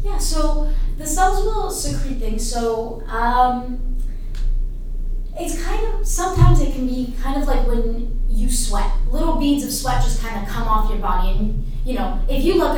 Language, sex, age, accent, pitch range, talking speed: English, female, 20-39, American, 210-270 Hz, 185 wpm